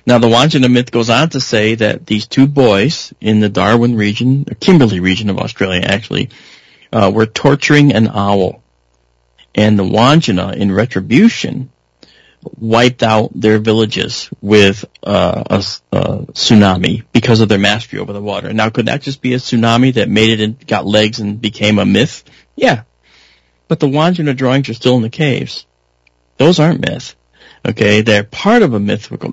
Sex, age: male, 40-59